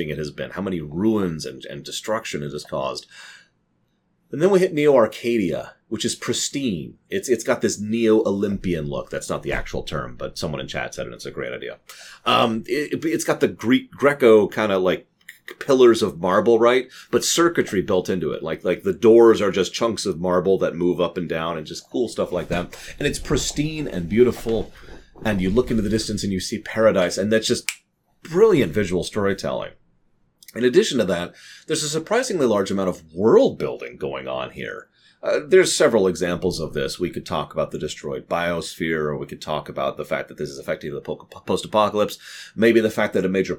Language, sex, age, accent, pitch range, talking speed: English, male, 30-49, American, 90-115 Hz, 205 wpm